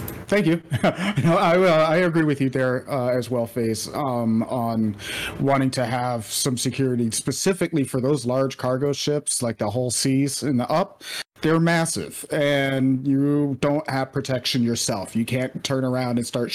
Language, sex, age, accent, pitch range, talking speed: English, male, 30-49, American, 120-140 Hz, 180 wpm